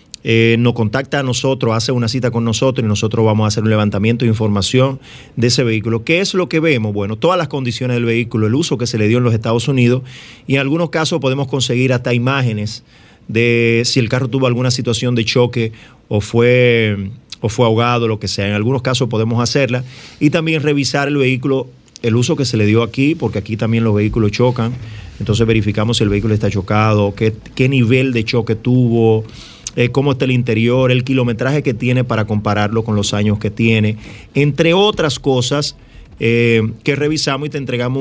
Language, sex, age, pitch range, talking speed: Spanish, male, 30-49, 110-130 Hz, 200 wpm